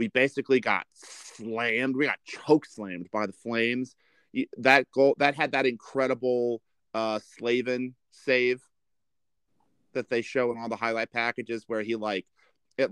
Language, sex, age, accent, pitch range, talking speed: English, male, 30-49, American, 110-130 Hz, 150 wpm